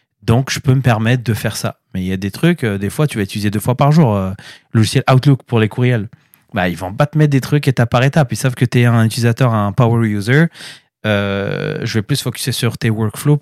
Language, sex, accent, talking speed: French, male, French, 270 wpm